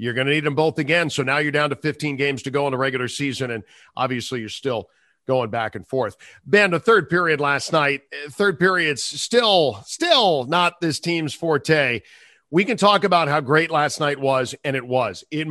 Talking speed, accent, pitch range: 215 wpm, American, 140-165 Hz